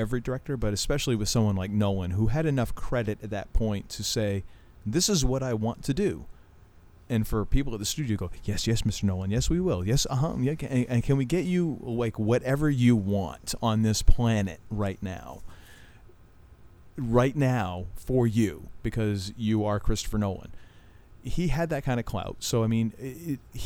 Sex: male